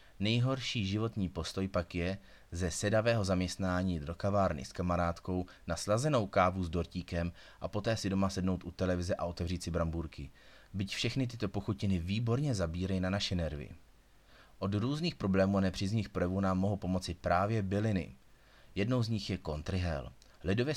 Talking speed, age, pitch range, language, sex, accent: 155 wpm, 30-49, 90-105 Hz, Czech, male, native